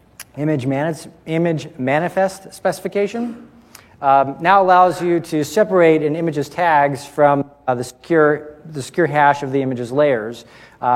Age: 40-59